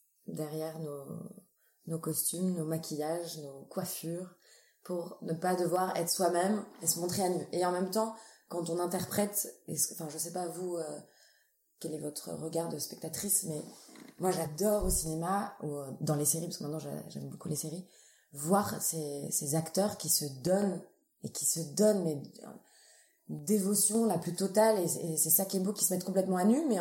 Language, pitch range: French, 160-195 Hz